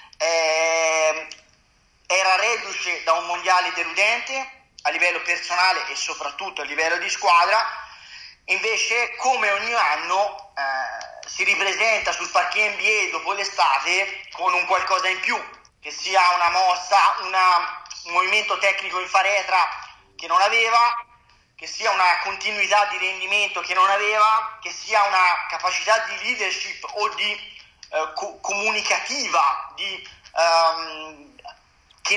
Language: Italian